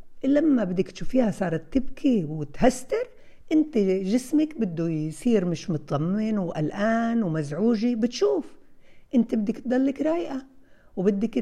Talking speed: 105 wpm